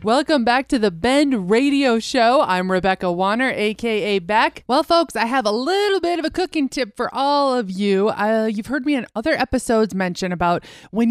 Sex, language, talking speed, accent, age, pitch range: female, English, 200 wpm, American, 20-39, 205-275 Hz